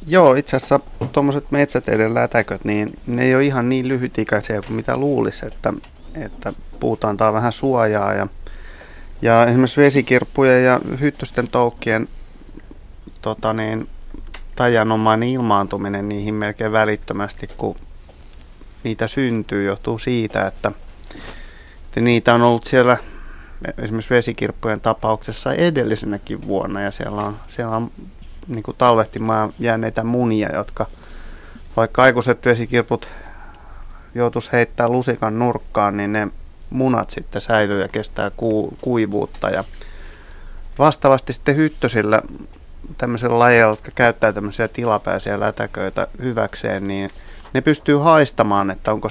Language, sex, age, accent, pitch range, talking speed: Finnish, male, 30-49, native, 105-125 Hz, 115 wpm